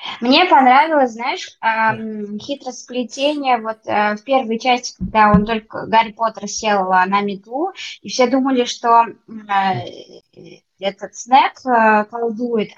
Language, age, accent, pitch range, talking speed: Russian, 20-39, native, 200-245 Hz, 110 wpm